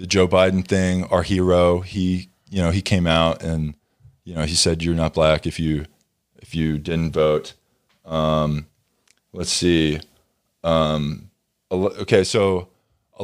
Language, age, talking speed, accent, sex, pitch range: English, 20-39, 150 wpm, American, male, 90-120 Hz